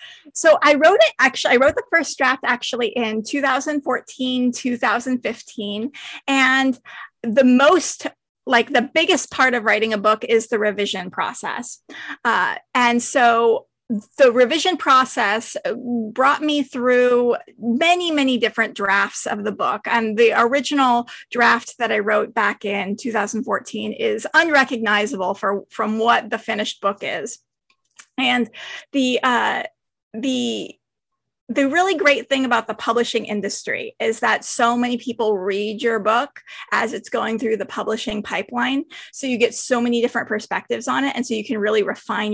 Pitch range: 220-265 Hz